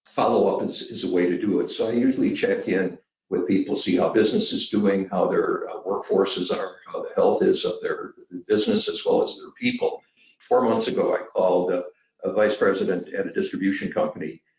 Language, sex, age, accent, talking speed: English, male, 60-79, American, 200 wpm